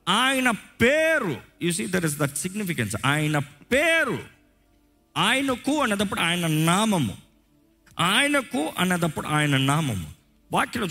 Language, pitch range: Telugu, 120-190 Hz